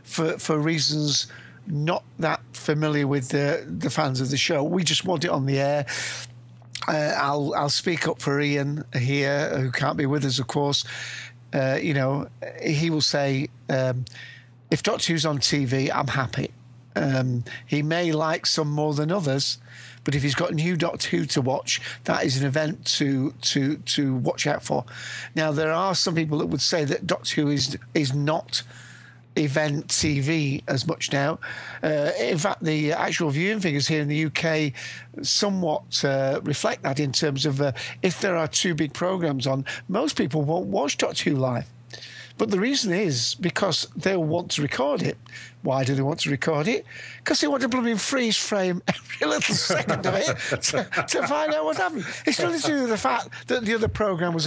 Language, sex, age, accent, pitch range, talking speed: English, male, 50-69, British, 140-165 Hz, 195 wpm